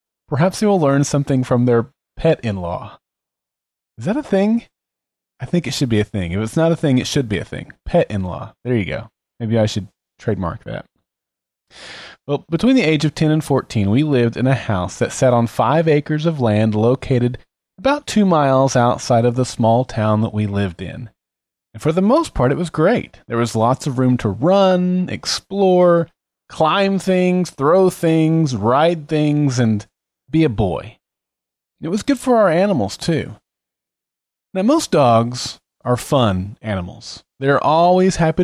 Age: 30-49